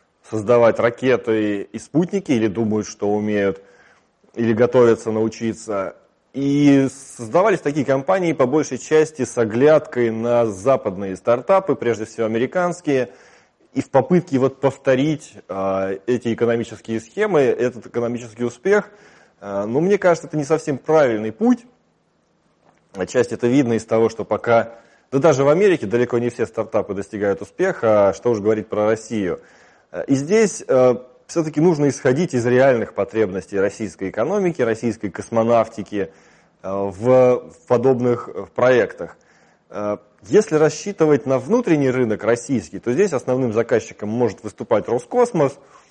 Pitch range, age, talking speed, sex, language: 110-145 Hz, 20-39, 130 wpm, male, Russian